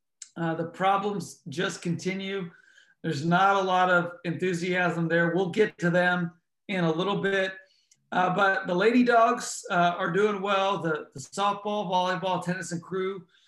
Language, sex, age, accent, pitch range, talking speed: English, male, 40-59, American, 170-195 Hz, 160 wpm